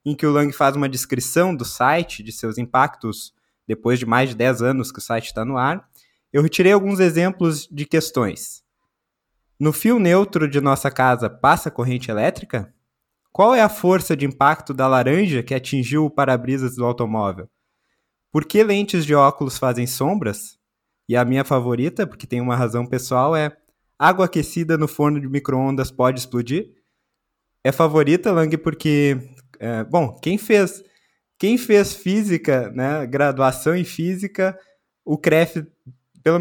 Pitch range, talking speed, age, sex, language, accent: 130-180 Hz, 160 wpm, 20-39, male, Portuguese, Brazilian